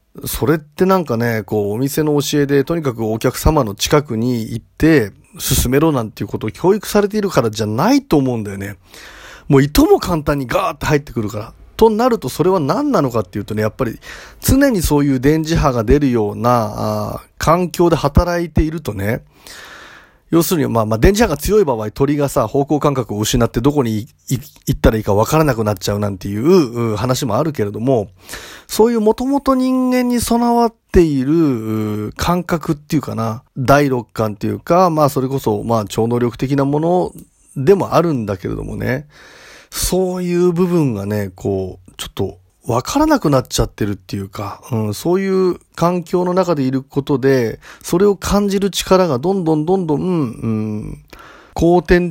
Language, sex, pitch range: Japanese, male, 110-165 Hz